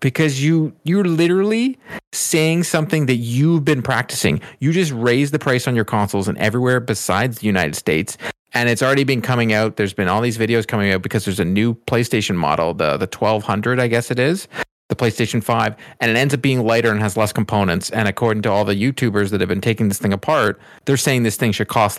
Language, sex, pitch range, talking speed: English, male, 105-135 Hz, 225 wpm